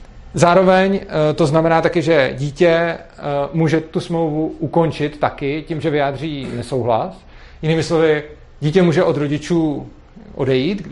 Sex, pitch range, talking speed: male, 150-175 Hz, 120 wpm